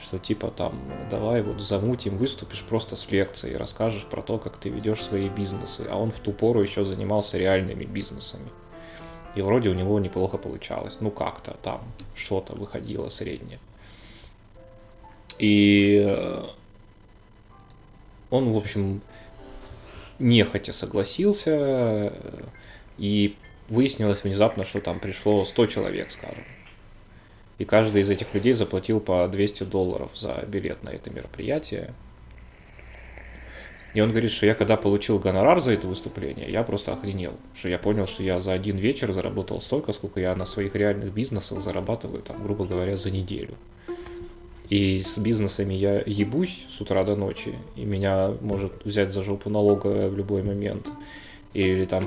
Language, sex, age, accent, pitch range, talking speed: Russian, male, 20-39, native, 95-110 Hz, 145 wpm